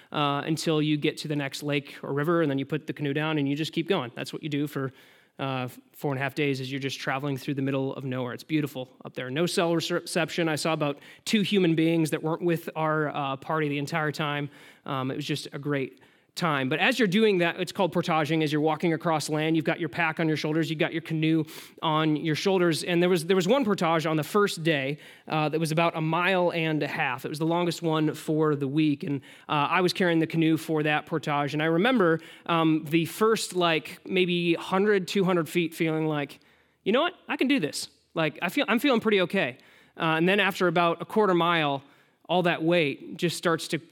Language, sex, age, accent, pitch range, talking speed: English, male, 20-39, American, 150-180 Hz, 240 wpm